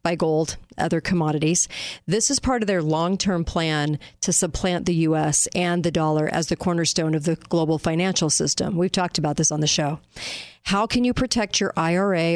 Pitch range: 165-200 Hz